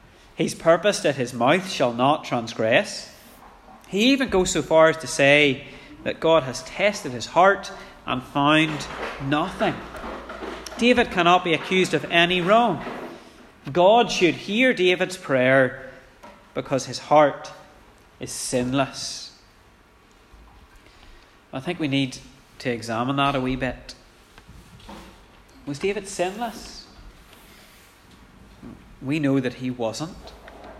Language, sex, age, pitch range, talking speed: English, male, 30-49, 125-175 Hz, 115 wpm